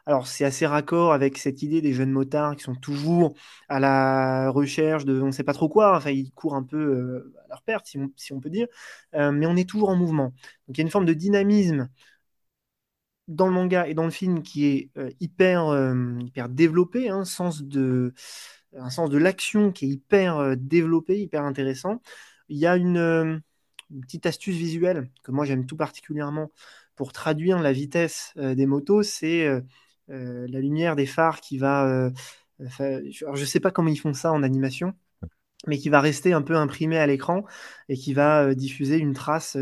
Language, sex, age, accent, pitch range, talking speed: French, male, 20-39, French, 135-170 Hz, 200 wpm